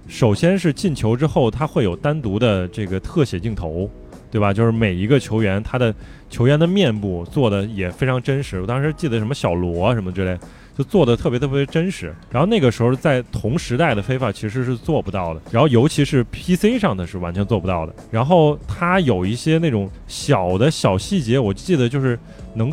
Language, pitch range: Chinese, 100-150 Hz